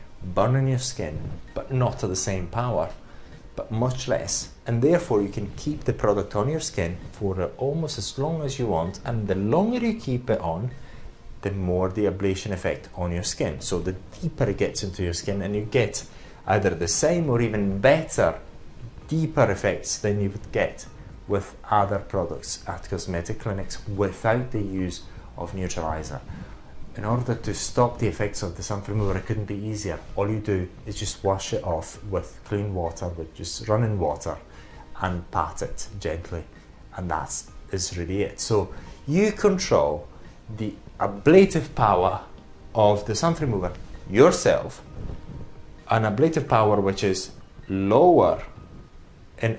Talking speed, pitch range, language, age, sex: 165 wpm, 95-120 Hz, English, 30-49, male